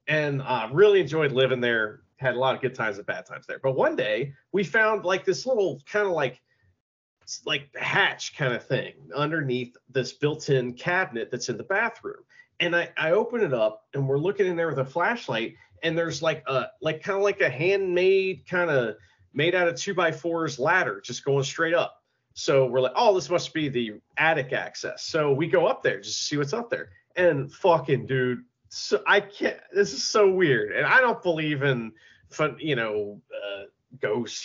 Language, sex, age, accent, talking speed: English, male, 40-59, American, 205 wpm